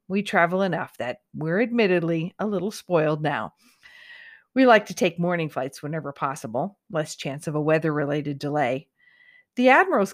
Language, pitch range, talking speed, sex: English, 155-215 Hz, 155 wpm, female